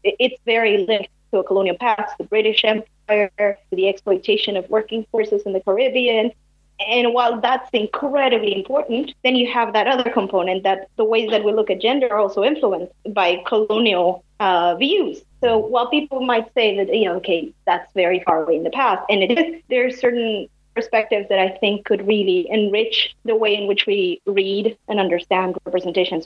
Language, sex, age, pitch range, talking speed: English, female, 30-49, 190-235 Hz, 185 wpm